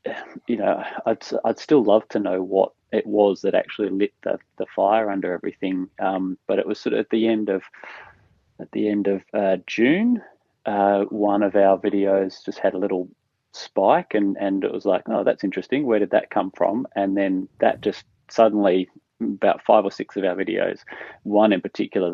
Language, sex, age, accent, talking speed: English, male, 30-49, Australian, 200 wpm